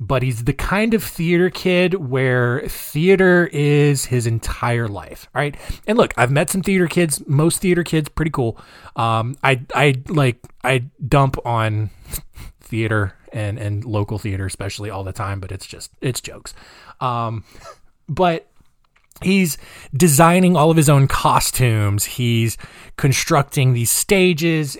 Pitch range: 120-170 Hz